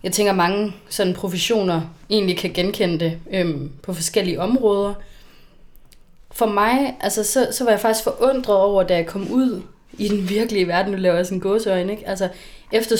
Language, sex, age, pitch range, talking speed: Danish, female, 20-39, 180-220 Hz, 170 wpm